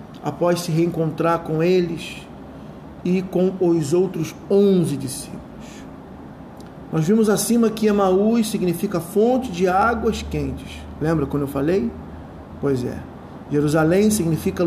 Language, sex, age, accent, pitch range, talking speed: Portuguese, male, 40-59, Brazilian, 160-195 Hz, 120 wpm